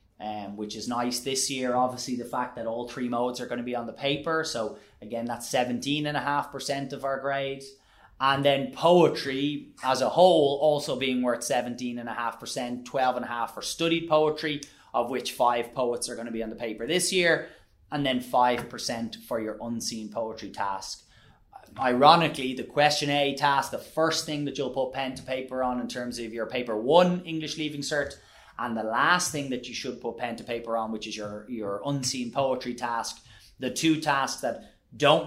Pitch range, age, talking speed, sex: 115-140 Hz, 20-39, 185 wpm, male